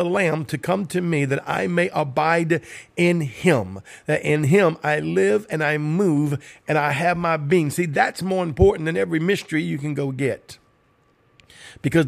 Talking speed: 185 wpm